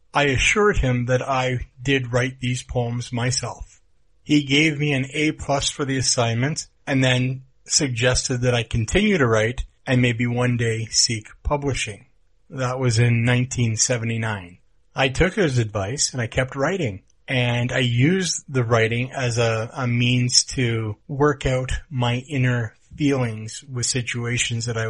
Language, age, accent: English, 30-49, American